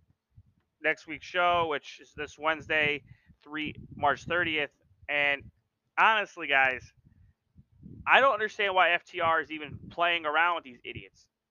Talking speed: 130 wpm